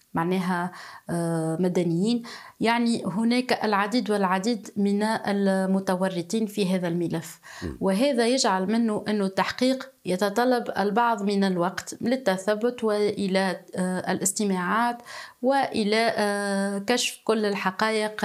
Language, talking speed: Arabic, 90 wpm